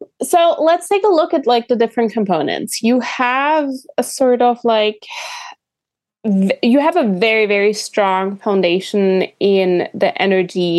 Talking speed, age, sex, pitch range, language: 145 wpm, 20-39, female, 190-235 Hz, English